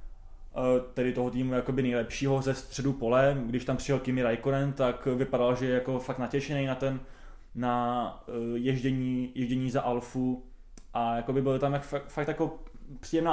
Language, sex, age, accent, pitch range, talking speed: Czech, male, 20-39, native, 120-140 Hz, 155 wpm